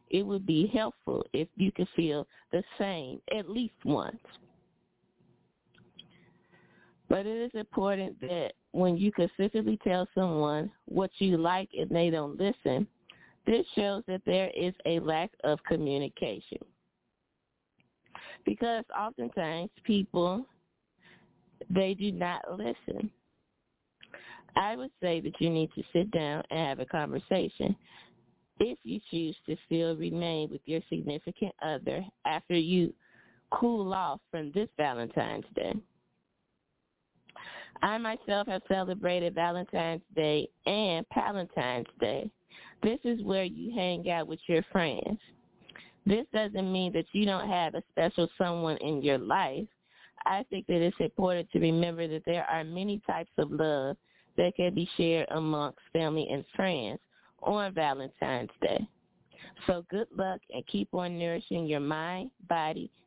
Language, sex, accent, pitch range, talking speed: English, female, American, 160-200 Hz, 135 wpm